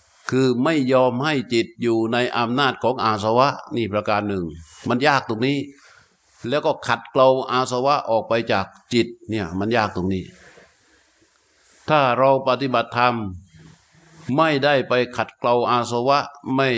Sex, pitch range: male, 110-135 Hz